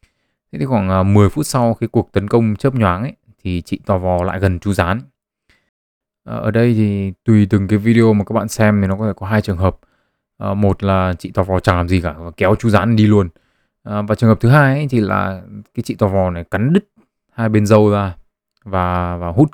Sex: male